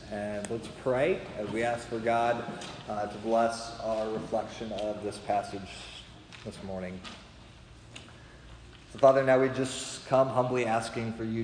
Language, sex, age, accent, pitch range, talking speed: English, male, 30-49, American, 105-115 Hz, 145 wpm